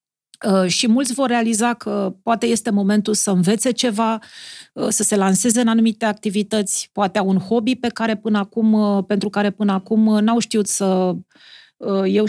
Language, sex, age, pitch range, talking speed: Romanian, female, 40-59, 210-250 Hz, 160 wpm